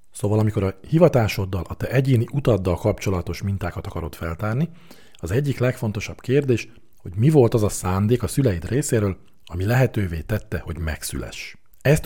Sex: male